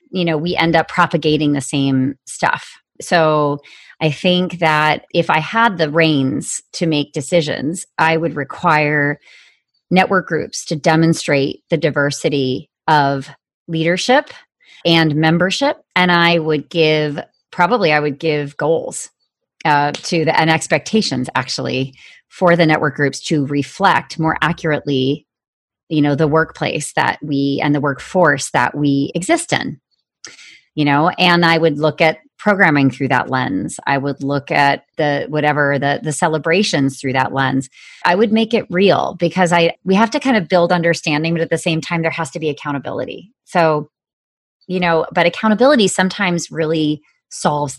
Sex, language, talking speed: female, English, 155 wpm